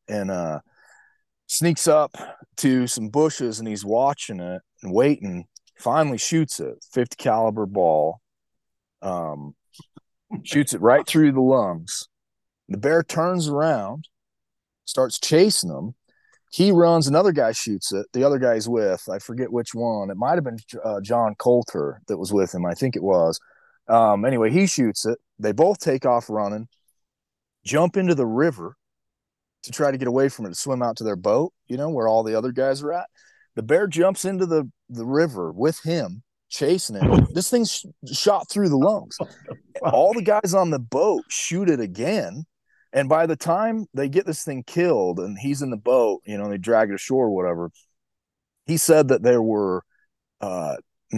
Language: English